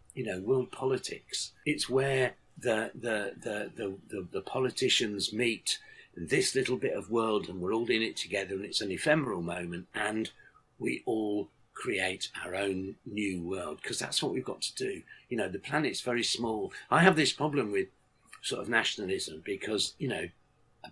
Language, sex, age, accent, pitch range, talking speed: English, male, 50-69, British, 105-150 Hz, 180 wpm